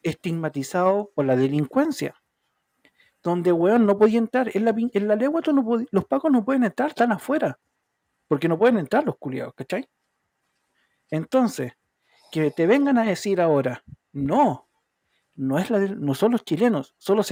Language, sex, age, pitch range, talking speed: Spanish, male, 50-69, 155-225 Hz, 165 wpm